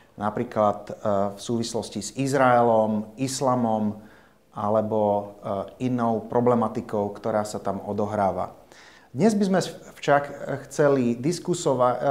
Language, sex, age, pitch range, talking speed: Slovak, male, 30-49, 110-135 Hz, 95 wpm